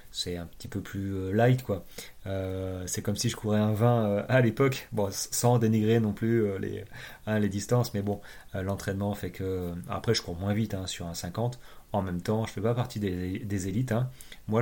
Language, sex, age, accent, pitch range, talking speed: French, male, 30-49, French, 95-115 Hz, 230 wpm